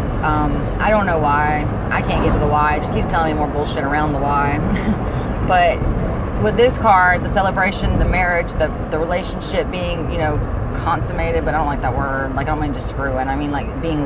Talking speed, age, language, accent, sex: 225 wpm, 20-39, English, American, female